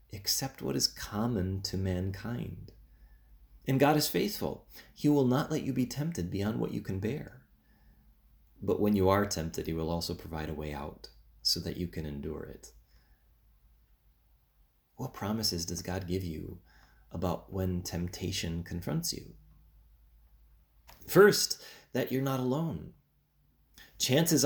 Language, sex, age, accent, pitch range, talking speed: English, male, 30-49, American, 75-110 Hz, 140 wpm